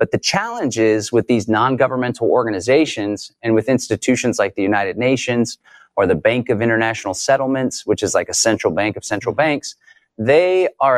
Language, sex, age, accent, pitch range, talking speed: English, male, 30-49, American, 110-140 Hz, 175 wpm